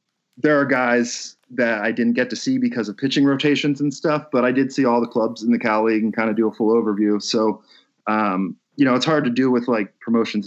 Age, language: 30-49, English